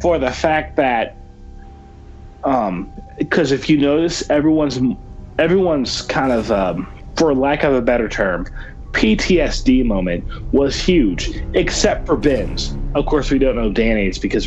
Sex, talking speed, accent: male, 140 wpm, American